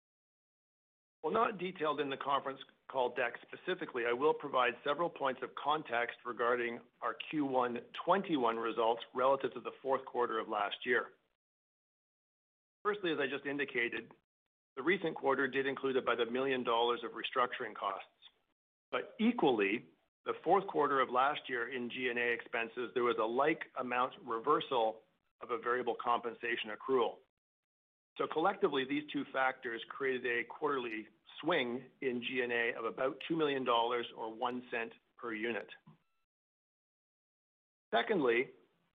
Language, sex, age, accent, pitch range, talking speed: English, male, 50-69, American, 120-150 Hz, 135 wpm